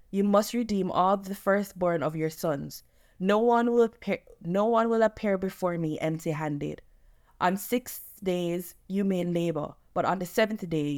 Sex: female